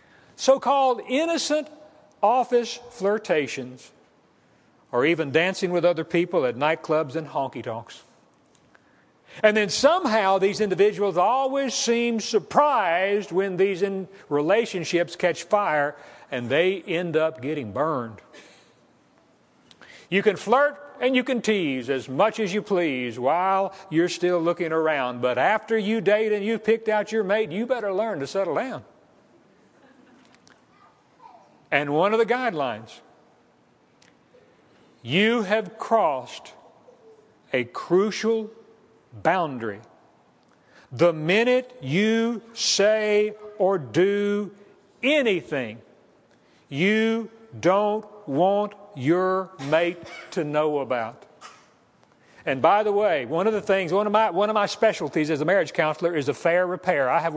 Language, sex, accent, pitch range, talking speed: English, male, American, 165-220 Hz, 120 wpm